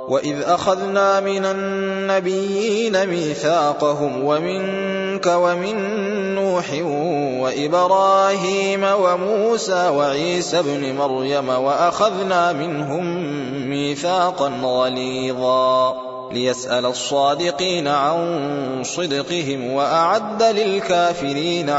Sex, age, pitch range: male, 20-39, 135-190 Hz